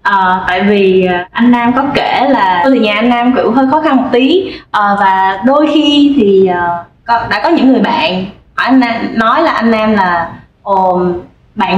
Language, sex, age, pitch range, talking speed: Vietnamese, female, 20-39, 195-265 Hz, 195 wpm